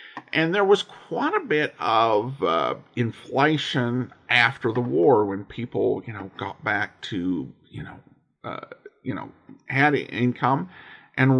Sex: male